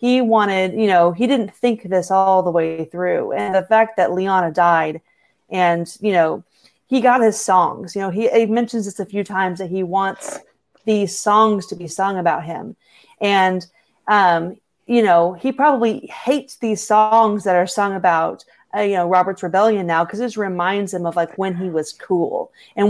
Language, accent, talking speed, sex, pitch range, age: English, American, 195 wpm, female, 180-225 Hz, 30-49